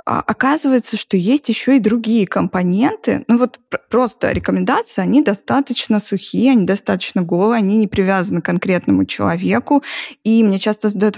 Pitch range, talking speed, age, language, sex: 190-250 Hz, 145 wpm, 20-39, Russian, female